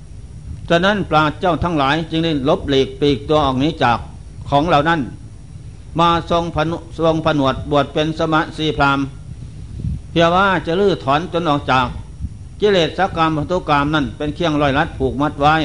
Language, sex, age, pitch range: Thai, male, 60-79, 135-170 Hz